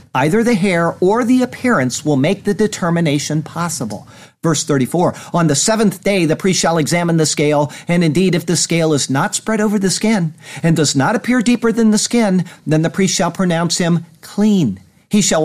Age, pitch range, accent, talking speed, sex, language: 50-69, 135-185 Hz, American, 200 wpm, male, English